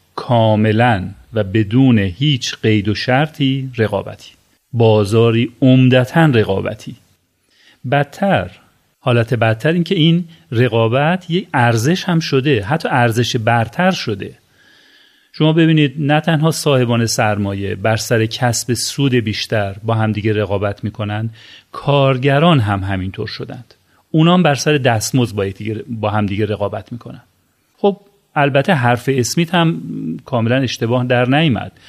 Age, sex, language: 40-59, male, Persian